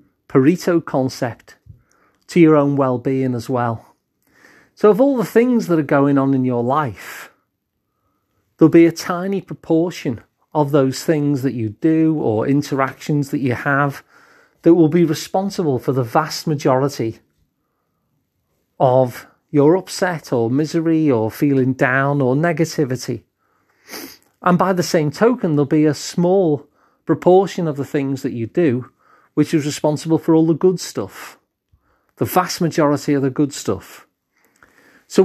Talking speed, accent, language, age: 145 wpm, British, English, 40-59